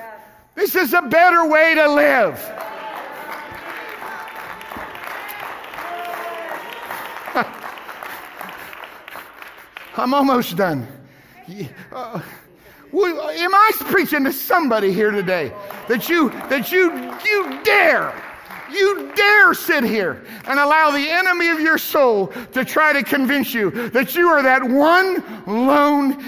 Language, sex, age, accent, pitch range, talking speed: English, male, 50-69, American, 240-325 Hz, 105 wpm